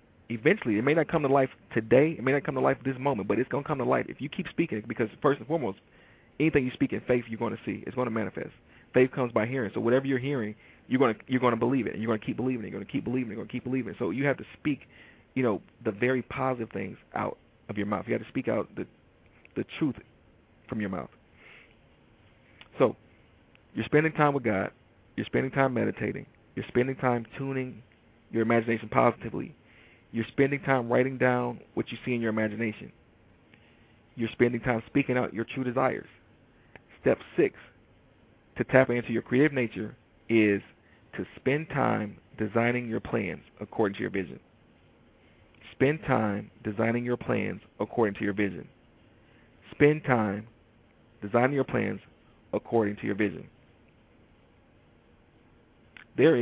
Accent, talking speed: American, 195 wpm